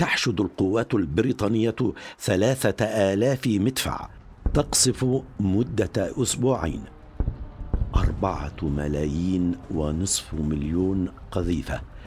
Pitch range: 85-110 Hz